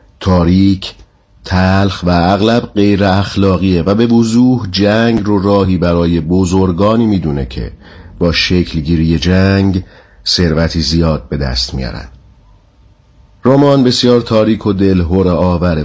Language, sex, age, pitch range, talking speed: Persian, male, 50-69, 85-105 Hz, 115 wpm